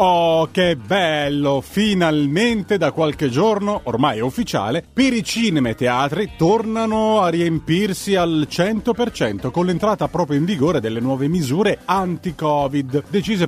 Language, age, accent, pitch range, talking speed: Italian, 30-49, native, 125-180 Hz, 140 wpm